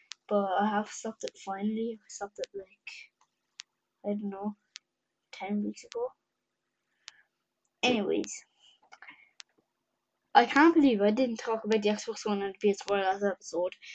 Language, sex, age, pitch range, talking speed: English, female, 10-29, 200-255 Hz, 140 wpm